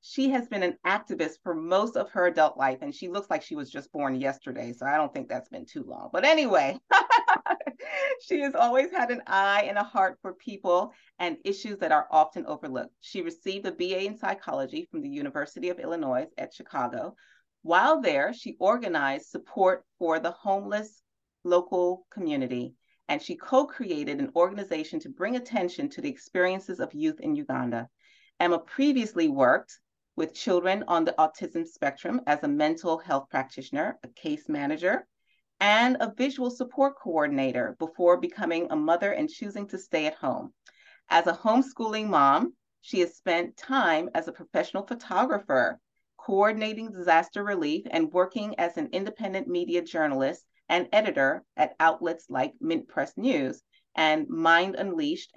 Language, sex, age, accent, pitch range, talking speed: English, female, 30-49, American, 165-270 Hz, 165 wpm